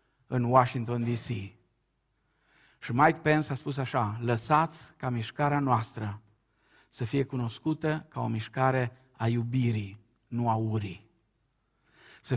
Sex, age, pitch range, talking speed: male, 50-69, 115-140 Hz, 120 wpm